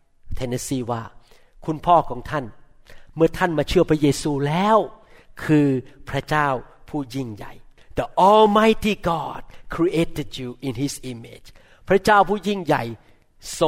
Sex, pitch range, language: male, 145-225 Hz, Thai